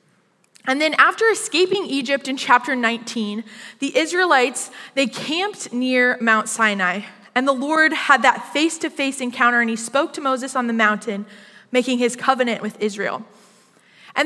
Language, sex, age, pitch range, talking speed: English, female, 20-39, 220-285 Hz, 160 wpm